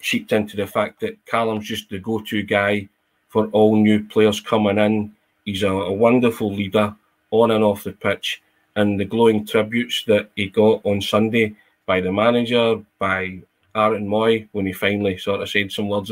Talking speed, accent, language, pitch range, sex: 180 wpm, British, English, 100-110 Hz, male